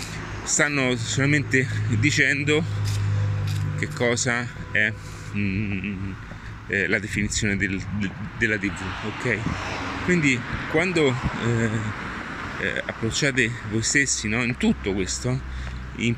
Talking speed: 90 wpm